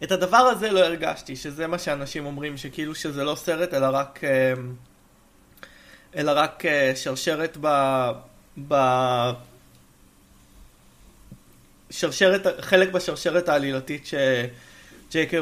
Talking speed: 95 wpm